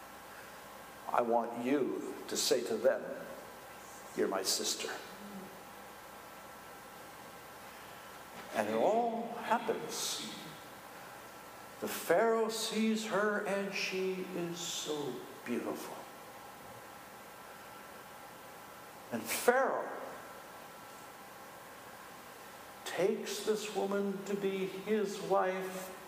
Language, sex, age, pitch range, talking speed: English, male, 60-79, 210-305 Hz, 75 wpm